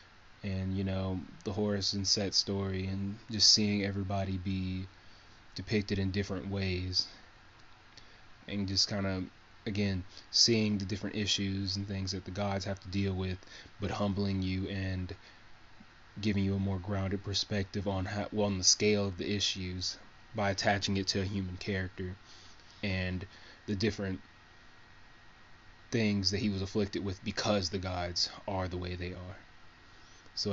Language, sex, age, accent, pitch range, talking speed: English, male, 20-39, American, 95-105 Hz, 155 wpm